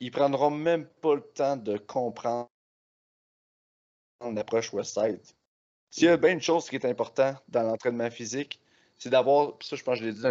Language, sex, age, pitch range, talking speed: French, male, 30-49, 115-145 Hz, 190 wpm